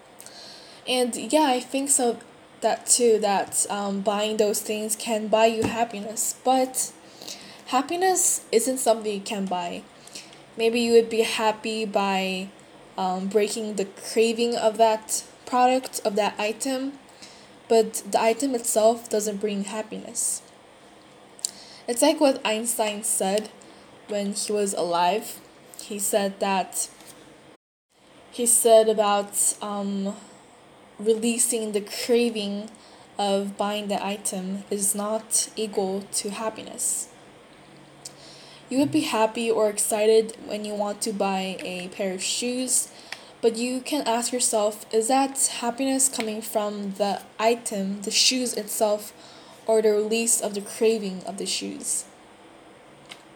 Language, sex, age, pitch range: Korean, female, 10-29, 210-235 Hz